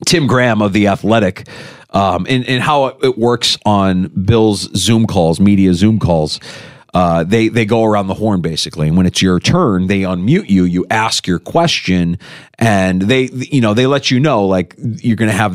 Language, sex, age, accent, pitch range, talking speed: English, male, 40-59, American, 100-130 Hz, 195 wpm